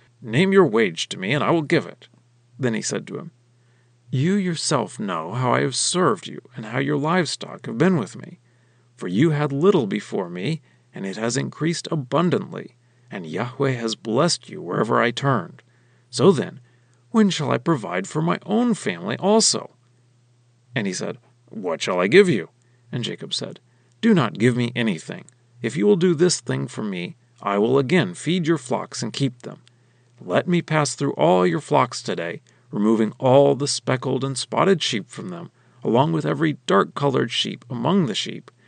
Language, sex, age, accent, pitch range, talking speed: English, male, 40-59, American, 120-165 Hz, 185 wpm